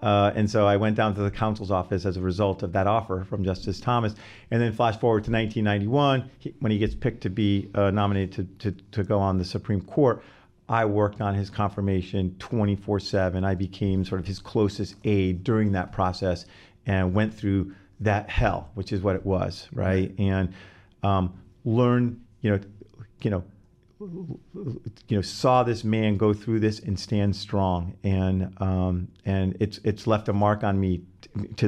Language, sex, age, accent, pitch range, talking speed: English, male, 40-59, American, 95-110 Hz, 185 wpm